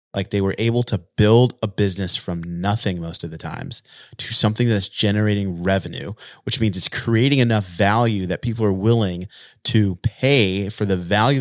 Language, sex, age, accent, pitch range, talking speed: English, male, 30-49, American, 100-130 Hz, 180 wpm